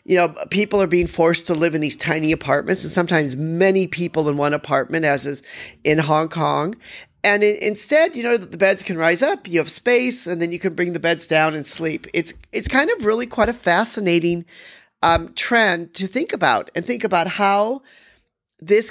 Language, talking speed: English, 205 wpm